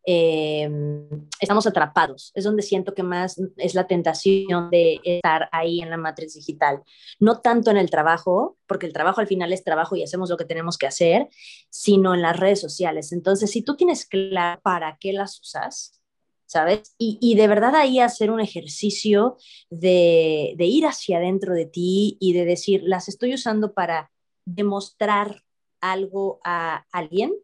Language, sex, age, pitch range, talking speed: Spanish, female, 20-39, 175-205 Hz, 170 wpm